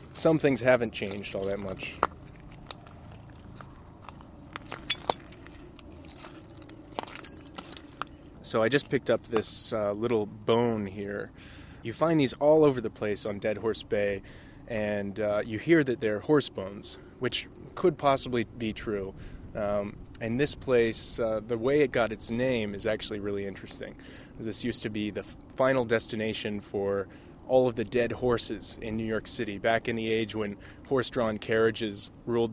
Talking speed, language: 150 wpm, English